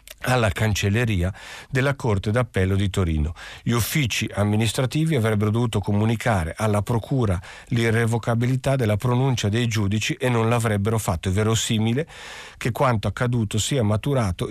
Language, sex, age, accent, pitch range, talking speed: Italian, male, 50-69, native, 95-120 Hz, 130 wpm